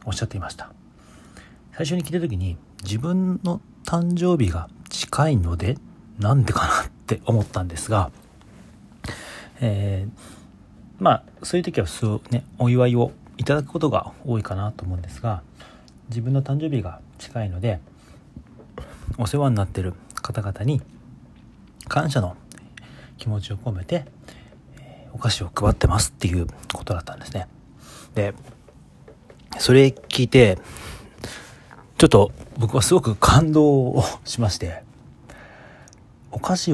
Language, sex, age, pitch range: Japanese, male, 40-59, 95-130 Hz